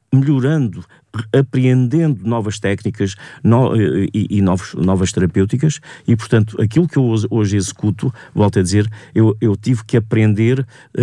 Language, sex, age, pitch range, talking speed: English, male, 50-69, 100-130 Hz, 135 wpm